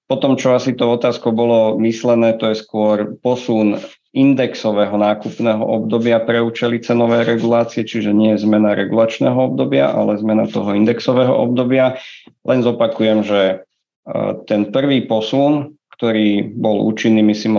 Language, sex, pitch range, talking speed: Slovak, male, 105-115 Hz, 135 wpm